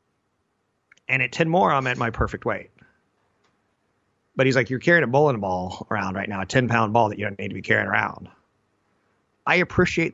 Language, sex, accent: English, male, American